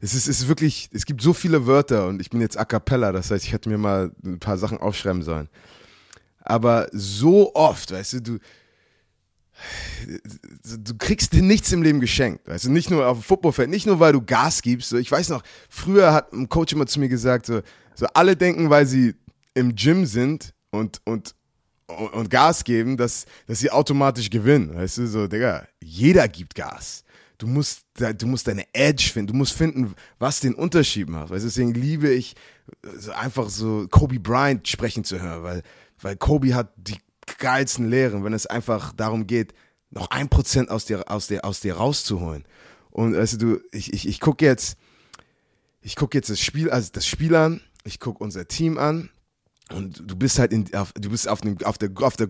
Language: German